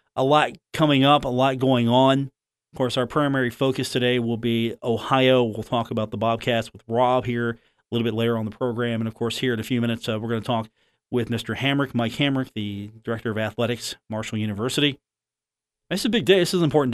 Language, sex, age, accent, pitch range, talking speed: English, male, 40-59, American, 115-140 Hz, 225 wpm